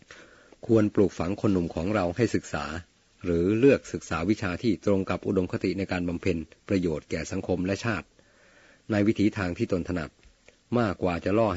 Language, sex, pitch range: Thai, male, 85-105 Hz